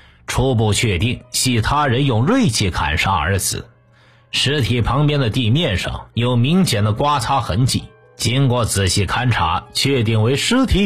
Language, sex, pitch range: Chinese, male, 95-135 Hz